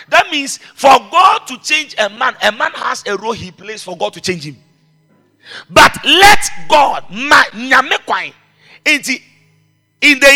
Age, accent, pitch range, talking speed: 50-69, Nigerian, 200-305 Hz, 155 wpm